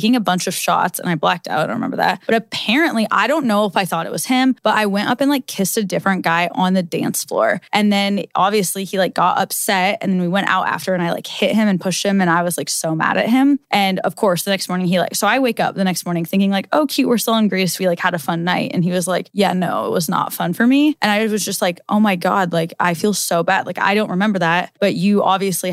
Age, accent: 10-29, American